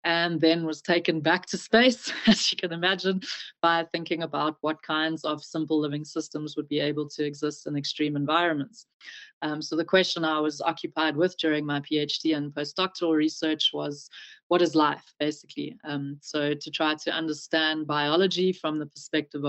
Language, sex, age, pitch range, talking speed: English, female, 30-49, 150-175 Hz, 175 wpm